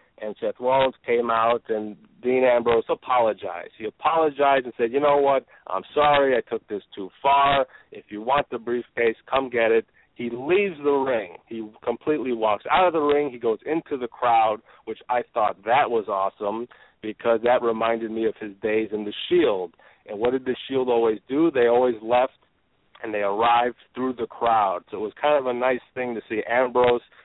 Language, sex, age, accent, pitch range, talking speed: English, male, 40-59, American, 115-140 Hz, 200 wpm